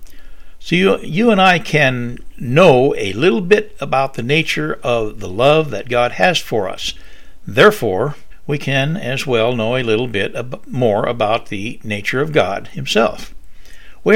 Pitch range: 110-140 Hz